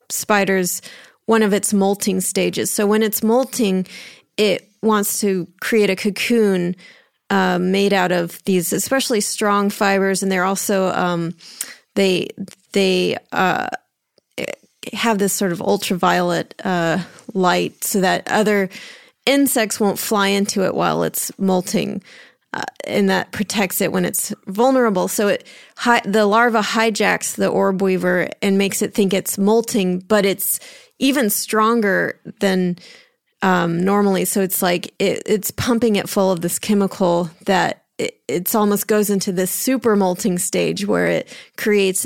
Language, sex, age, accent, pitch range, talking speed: English, female, 30-49, American, 185-220 Hz, 145 wpm